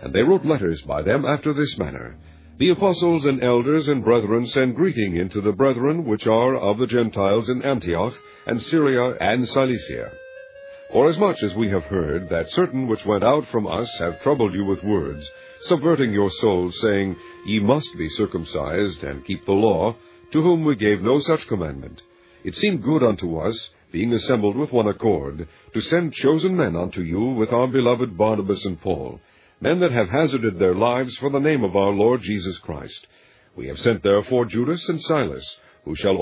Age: 50-69